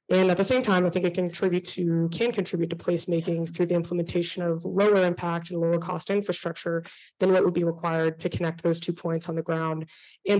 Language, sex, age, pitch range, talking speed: English, female, 20-39, 165-185 Hz, 225 wpm